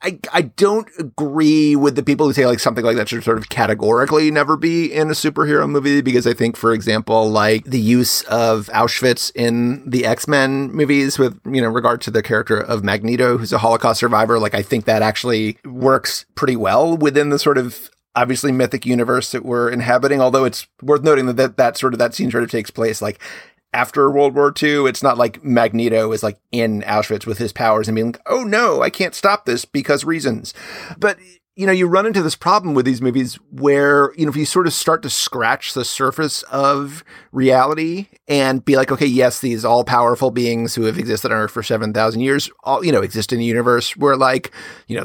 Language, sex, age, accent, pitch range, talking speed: English, male, 30-49, American, 115-150 Hz, 220 wpm